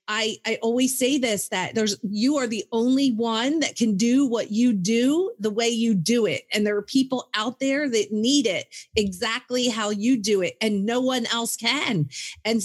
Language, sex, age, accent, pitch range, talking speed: English, female, 40-59, American, 205-260 Hz, 205 wpm